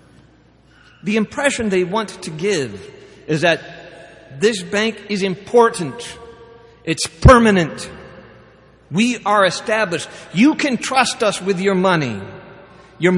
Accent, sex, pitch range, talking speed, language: American, male, 140-190 Hz, 115 wpm, English